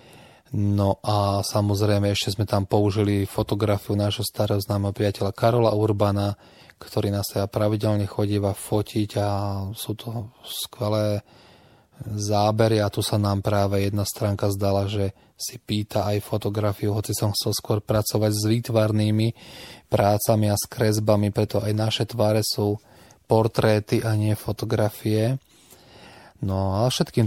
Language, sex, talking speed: Slovak, male, 135 wpm